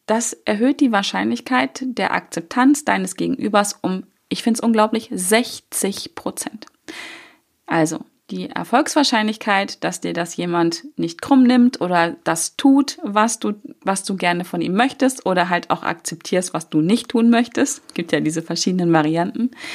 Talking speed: 150 wpm